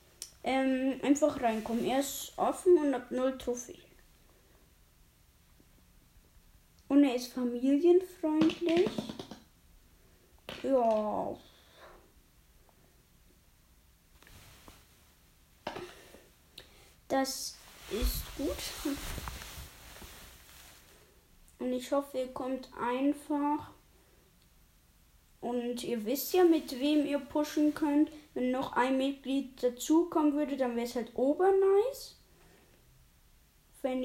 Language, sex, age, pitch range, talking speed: German, female, 20-39, 245-300 Hz, 85 wpm